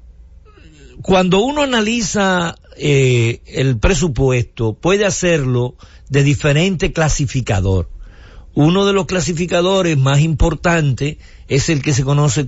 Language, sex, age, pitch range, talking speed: English, male, 50-69, 120-165 Hz, 105 wpm